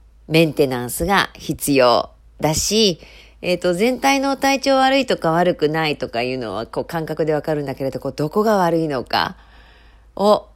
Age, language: 40-59, Japanese